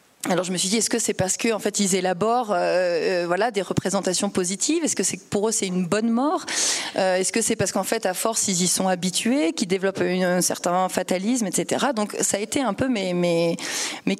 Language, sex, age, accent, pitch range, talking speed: French, female, 30-49, French, 180-220 Hz, 235 wpm